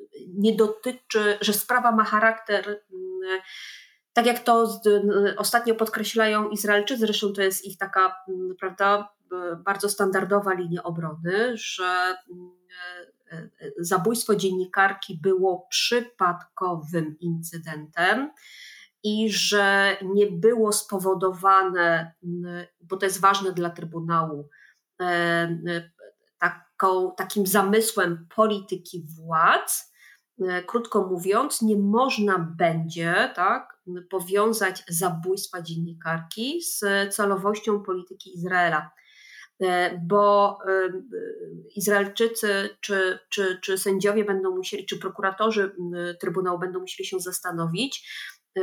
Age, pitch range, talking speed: 30-49, 180-210 Hz, 90 wpm